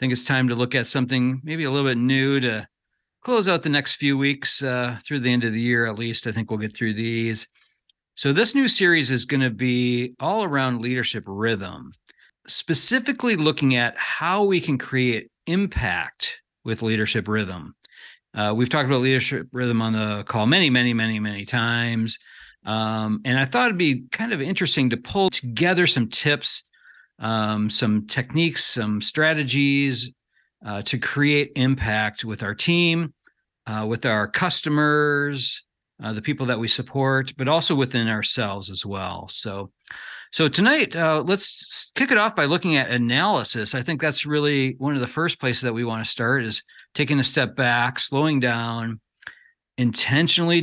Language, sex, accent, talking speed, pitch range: English, male, American, 175 wpm, 115-145 Hz